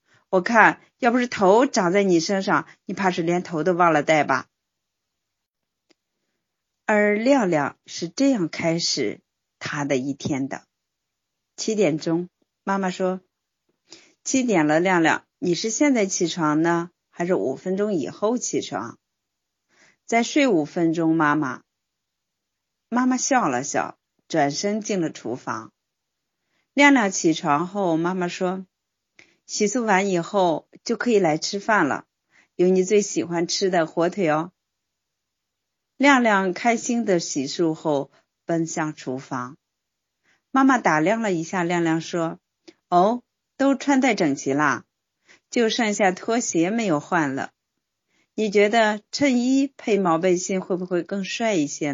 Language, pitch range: Chinese, 165-220 Hz